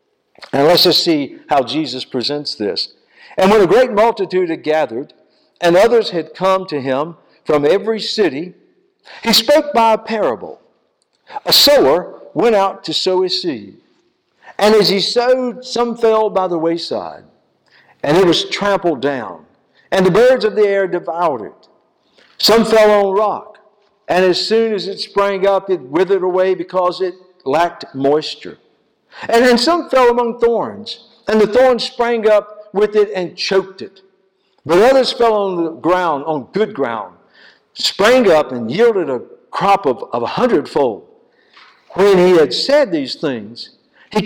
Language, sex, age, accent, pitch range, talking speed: English, male, 60-79, American, 180-250 Hz, 160 wpm